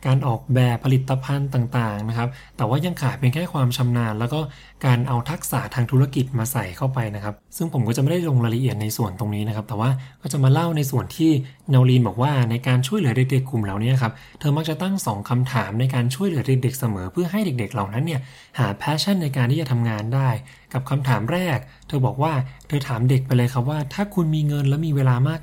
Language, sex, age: English, male, 20-39